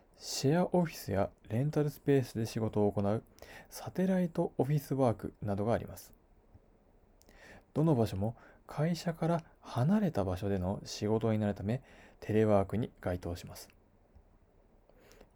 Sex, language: male, Japanese